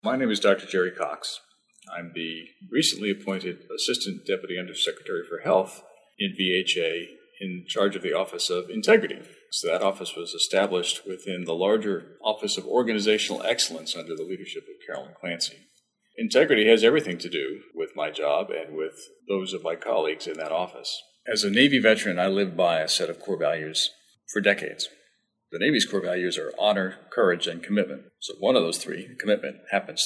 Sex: male